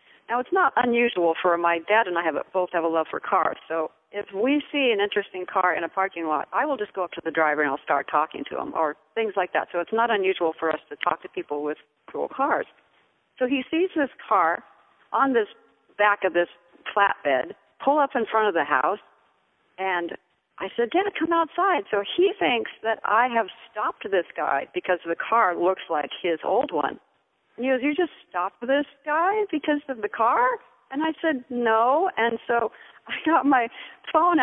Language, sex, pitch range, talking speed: English, female, 185-275 Hz, 210 wpm